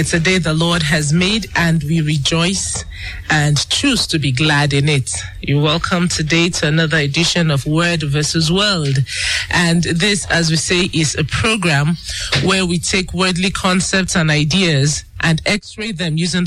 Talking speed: 170 wpm